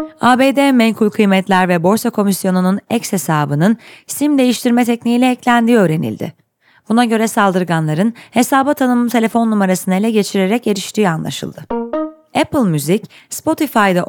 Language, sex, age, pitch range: Turkish, female, 30-49, 185-245 Hz